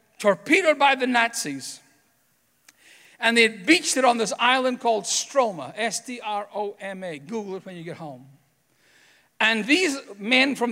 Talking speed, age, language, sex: 140 wpm, 50-69, English, male